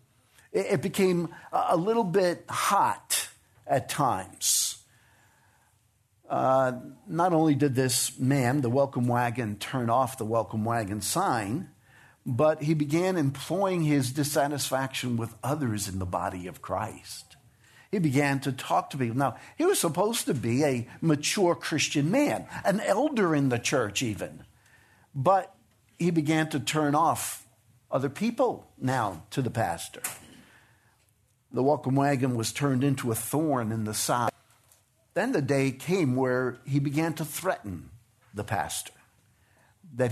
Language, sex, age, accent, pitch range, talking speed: English, male, 50-69, American, 115-155 Hz, 140 wpm